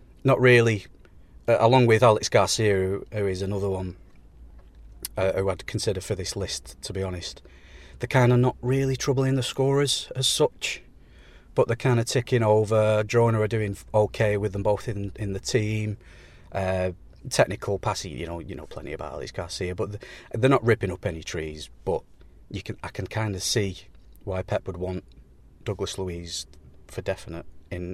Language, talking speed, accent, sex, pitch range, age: English, 180 wpm, British, male, 90-110 Hz, 30-49